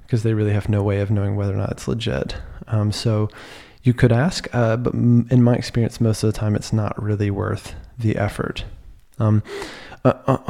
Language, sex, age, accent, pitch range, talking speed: English, male, 20-39, American, 105-120 Hz, 200 wpm